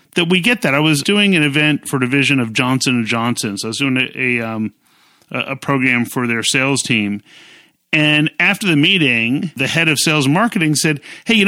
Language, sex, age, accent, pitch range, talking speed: English, male, 40-59, American, 140-205 Hz, 220 wpm